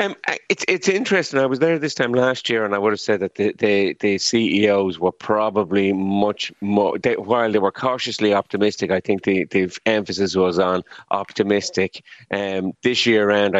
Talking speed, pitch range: 190 wpm, 95-105 Hz